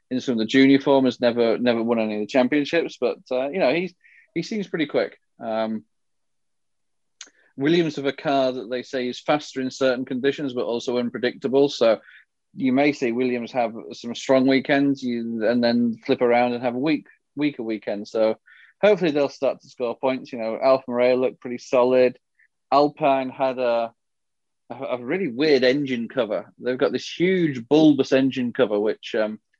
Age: 30-49